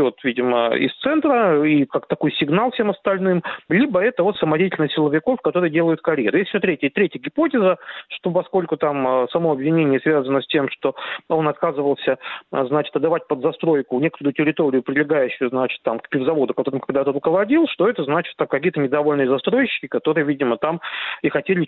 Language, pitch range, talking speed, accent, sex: Russian, 145-185 Hz, 165 wpm, native, male